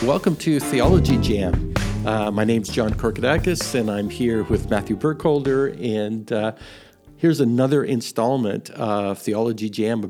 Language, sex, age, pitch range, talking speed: English, male, 50-69, 105-130 Hz, 145 wpm